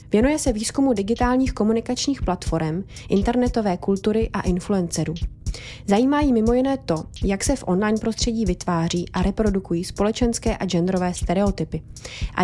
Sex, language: female, Czech